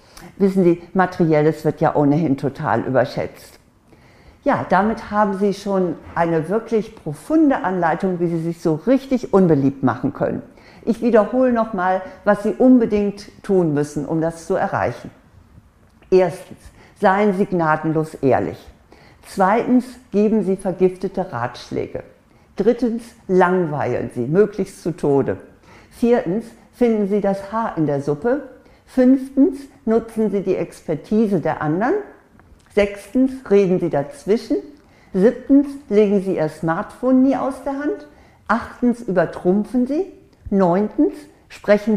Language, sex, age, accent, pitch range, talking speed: German, female, 50-69, German, 165-220 Hz, 125 wpm